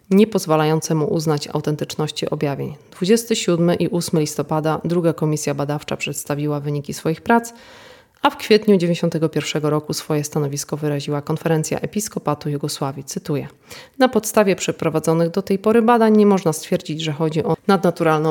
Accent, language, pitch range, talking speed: native, Polish, 155-205 Hz, 140 wpm